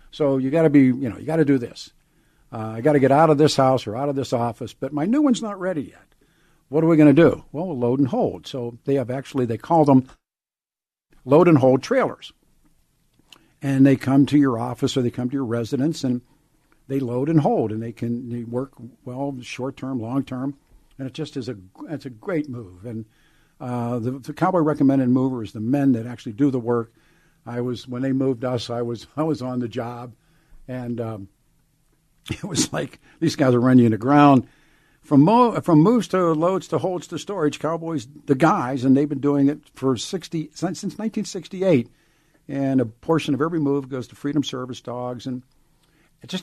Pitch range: 125-155 Hz